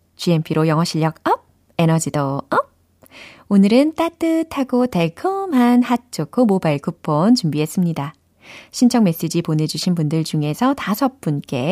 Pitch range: 160-250 Hz